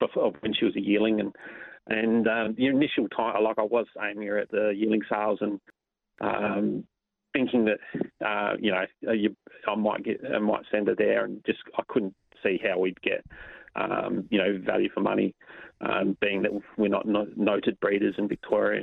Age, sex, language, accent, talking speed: 30-49, male, English, Australian, 195 wpm